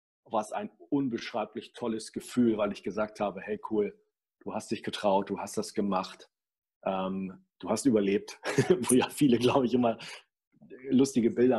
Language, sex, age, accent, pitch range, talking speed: German, male, 40-59, German, 115-135 Hz, 165 wpm